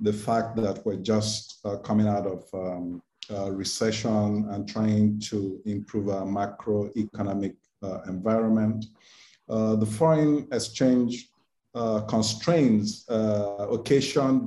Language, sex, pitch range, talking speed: English, male, 100-120 Hz, 110 wpm